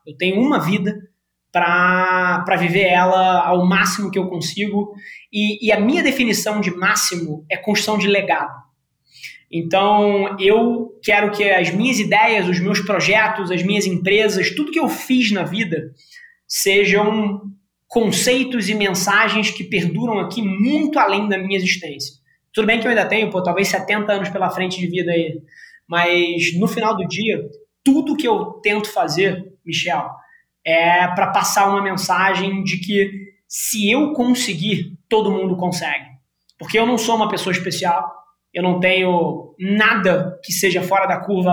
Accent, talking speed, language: Brazilian, 160 wpm, Portuguese